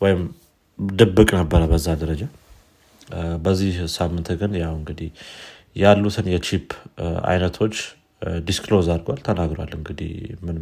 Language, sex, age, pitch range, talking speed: Amharic, male, 30-49, 85-100 Hz, 100 wpm